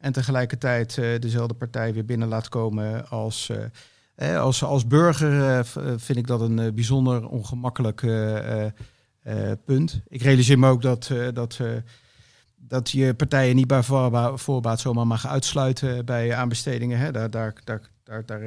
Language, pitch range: Dutch, 115-140 Hz